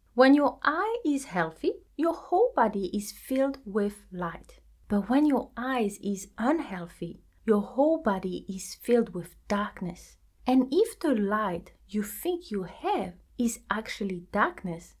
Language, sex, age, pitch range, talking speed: English, female, 30-49, 180-250 Hz, 145 wpm